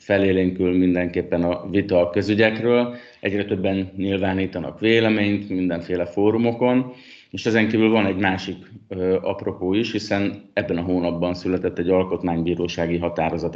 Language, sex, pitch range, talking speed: Hungarian, male, 85-105 Hz, 130 wpm